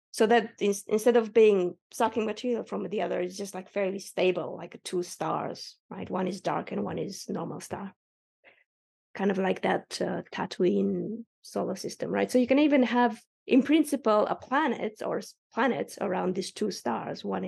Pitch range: 195-250 Hz